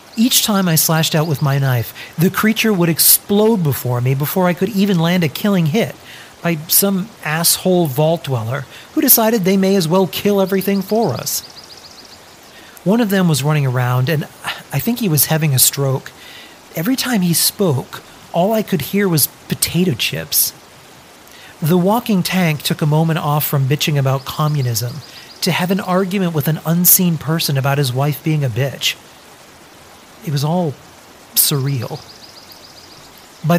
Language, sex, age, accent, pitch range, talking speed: English, male, 40-59, American, 140-180 Hz, 165 wpm